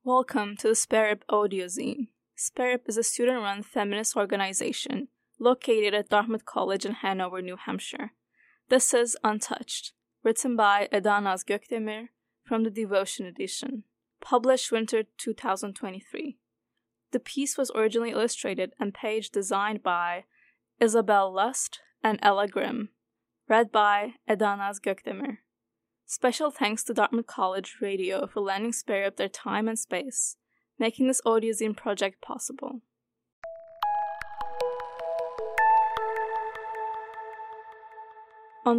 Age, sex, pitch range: 20-39, female, 200-250 Hz